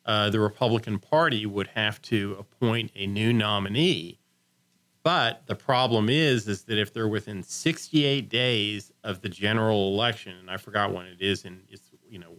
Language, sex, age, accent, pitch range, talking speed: English, male, 40-59, American, 95-115 Hz, 175 wpm